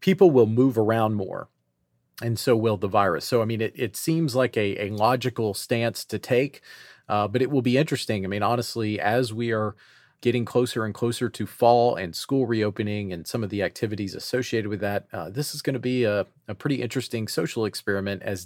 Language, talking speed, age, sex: English, 210 wpm, 40-59, male